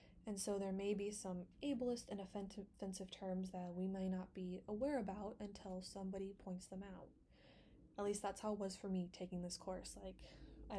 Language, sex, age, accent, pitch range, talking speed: English, female, 20-39, American, 185-210 Hz, 195 wpm